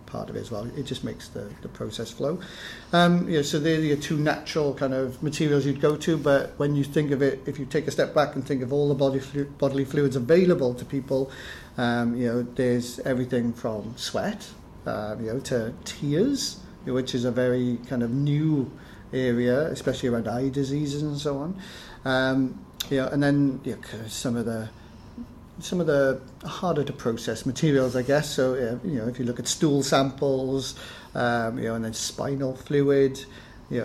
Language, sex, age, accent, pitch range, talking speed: English, male, 40-59, British, 125-145 Hz, 200 wpm